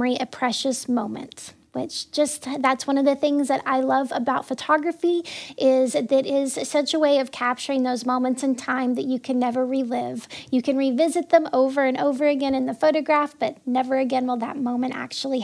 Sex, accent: female, American